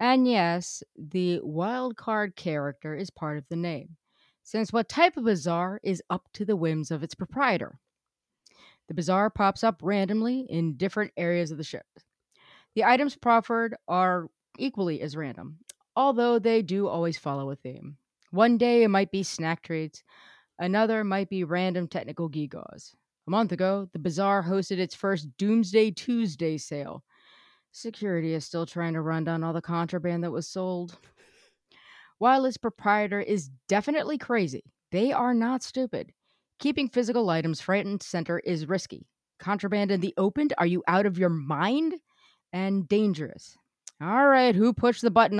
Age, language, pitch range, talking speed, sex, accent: 30-49, English, 165-225 Hz, 160 wpm, female, American